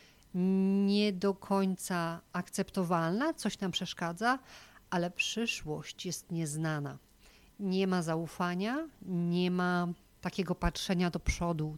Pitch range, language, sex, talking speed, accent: 165-195 Hz, Polish, female, 100 wpm, native